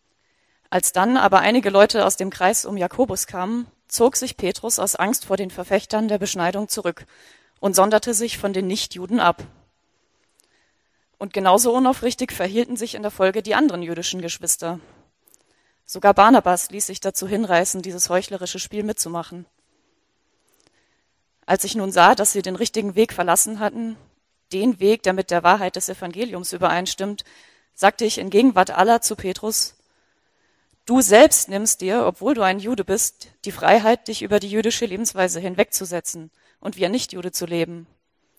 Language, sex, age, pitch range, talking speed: German, female, 30-49, 180-220 Hz, 160 wpm